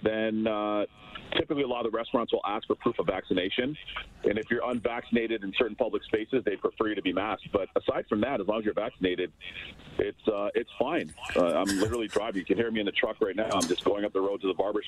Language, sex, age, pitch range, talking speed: English, male, 40-59, 105-140 Hz, 250 wpm